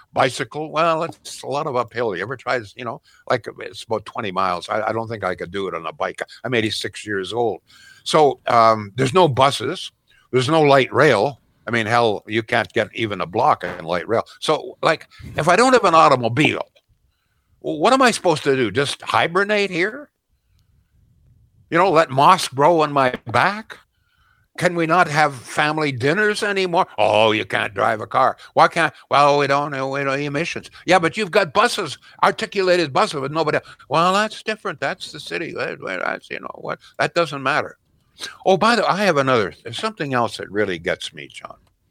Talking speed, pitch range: 200 wpm, 120-175 Hz